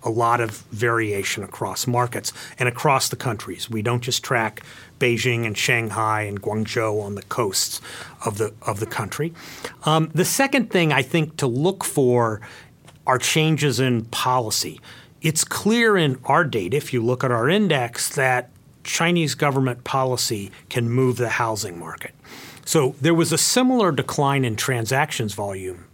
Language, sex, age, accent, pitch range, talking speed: English, male, 40-59, American, 110-140 Hz, 155 wpm